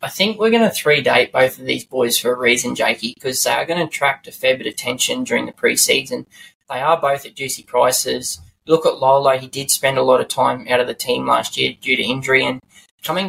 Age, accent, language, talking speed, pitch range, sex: 20-39, Australian, English, 250 wpm, 130-150 Hz, male